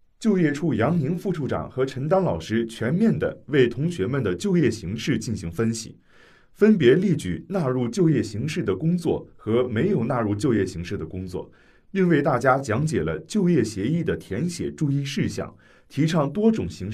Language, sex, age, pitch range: Chinese, male, 30-49, 110-175 Hz